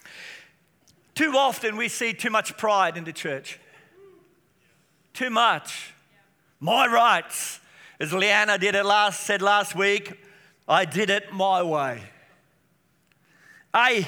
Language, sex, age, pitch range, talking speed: English, male, 50-69, 190-230 Hz, 120 wpm